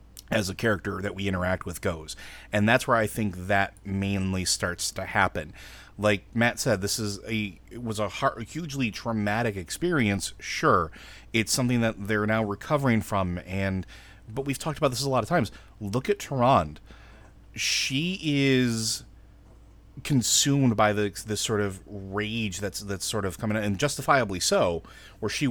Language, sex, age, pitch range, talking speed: English, male, 30-49, 95-115 Hz, 170 wpm